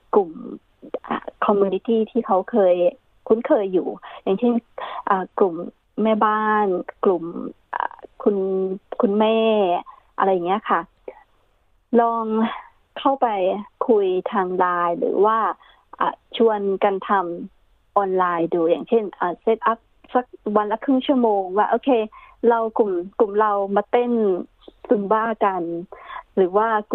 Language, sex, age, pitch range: Thai, female, 20-39, 195-235 Hz